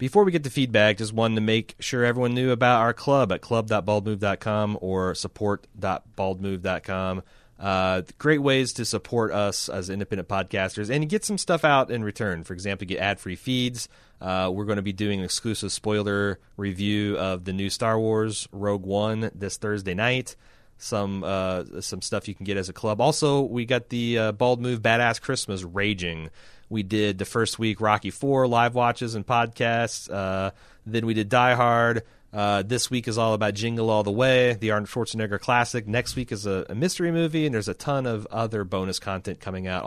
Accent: American